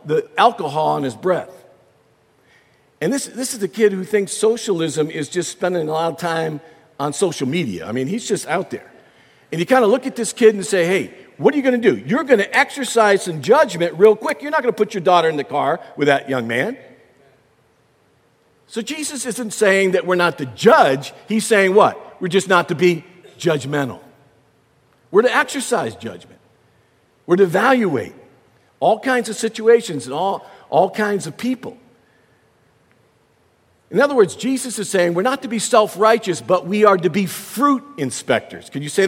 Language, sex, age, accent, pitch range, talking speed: English, male, 50-69, American, 155-225 Hz, 190 wpm